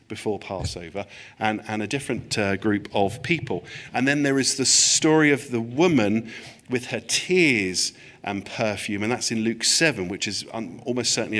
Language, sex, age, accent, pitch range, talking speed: English, male, 50-69, British, 115-165 Hz, 175 wpm